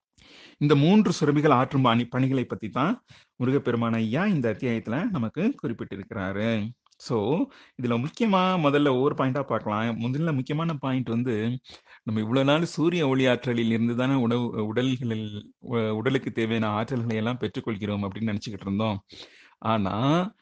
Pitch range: 115-150 Hz